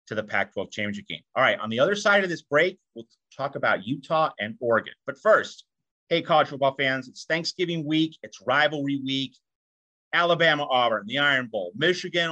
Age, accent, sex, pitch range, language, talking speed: 30-49, American, male, 130-155 Hz, English, 185 wpm